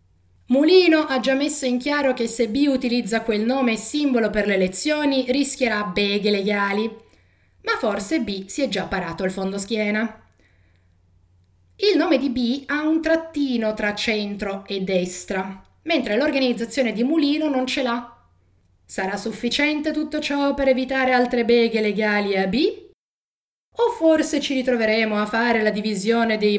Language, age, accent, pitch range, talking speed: Italian, 20-39, native, 200-275 Hz, 155 wpm